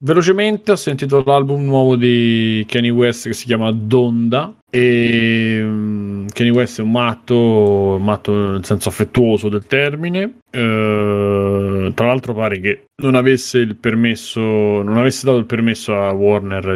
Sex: male